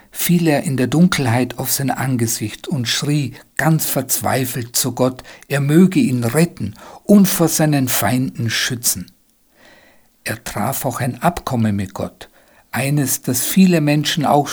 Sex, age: male, 60-79